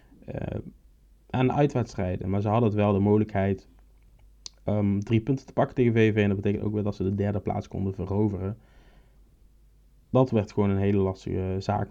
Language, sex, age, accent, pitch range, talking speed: Dutch, male, 20-39, Dutch, 100-115 Hz, 185 wpm